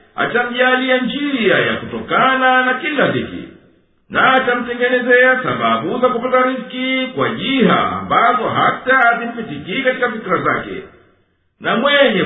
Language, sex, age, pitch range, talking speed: Swahili, male, 50-69, 235-255 Hz, 110 wpm